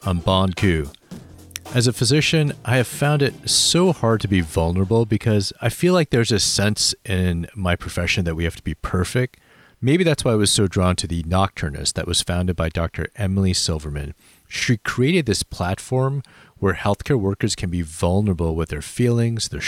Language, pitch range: English, 85-110 Hz